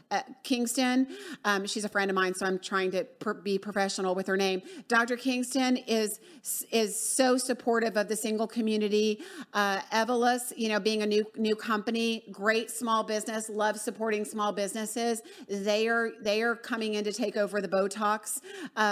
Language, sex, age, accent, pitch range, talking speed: English, female, 40-59, American, 210-245 Hz, 180 wpm